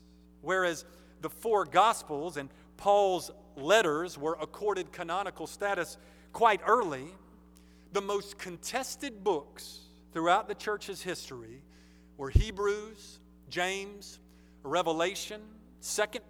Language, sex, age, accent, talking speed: English, male, 40-59, American, 95 wpm